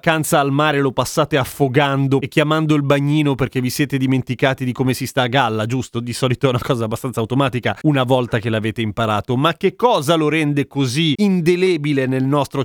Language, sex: Italian, male